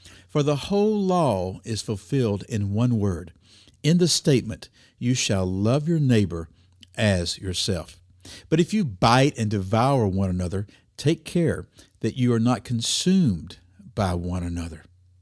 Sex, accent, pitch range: male, American, 95-135 Hz